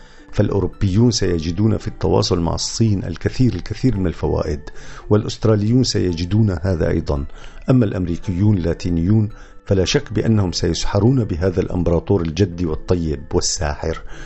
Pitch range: 85-105 Hz